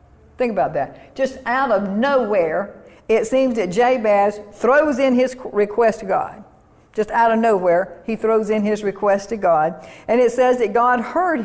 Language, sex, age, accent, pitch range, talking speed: English, female, 60-79, American, 220-250 Hz, 180 wpm